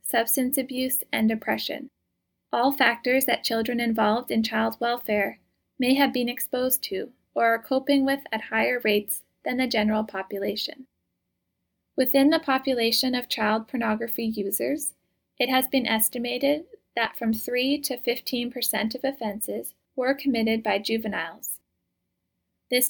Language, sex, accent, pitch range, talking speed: English, female, American, 205-255 Hz, 135 wpm